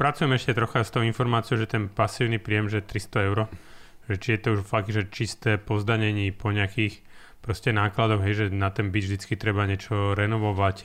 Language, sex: Slovak, male